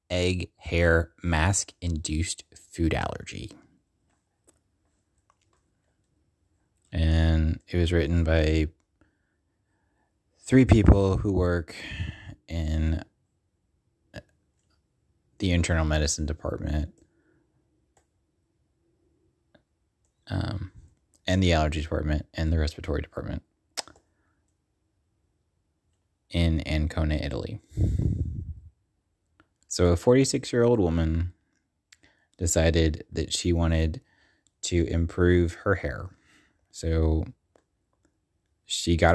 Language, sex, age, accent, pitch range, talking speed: English, male, 20-39, American, 80-95 Hz, 70 wpm